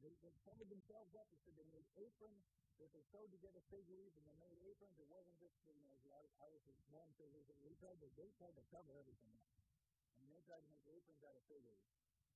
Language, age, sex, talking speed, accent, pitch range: English, 50-69, male, 265 wpm, American, 110-155 Hz